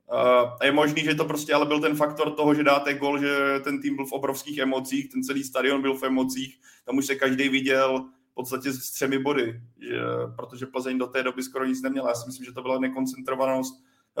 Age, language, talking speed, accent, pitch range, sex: 20-39, Czech, 230 wpm, native, 125-140 Hz, male